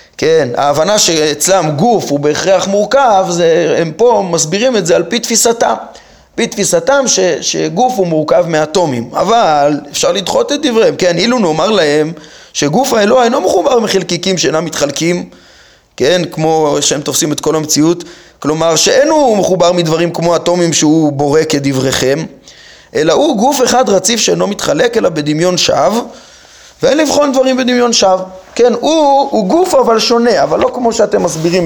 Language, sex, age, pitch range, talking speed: Hebrew, male, 20-39, 160-250 Hz, 155 wpm